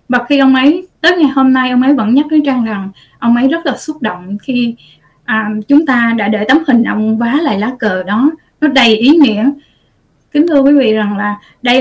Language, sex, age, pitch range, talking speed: Vietnamese, female, 20-39, 215-275 Hz, 235 wpm